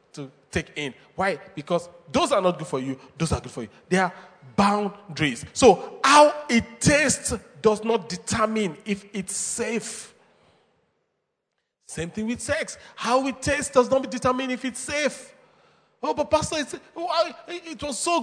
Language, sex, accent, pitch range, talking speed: English, male, Nigerian, 160-265 Hz, 160 wpm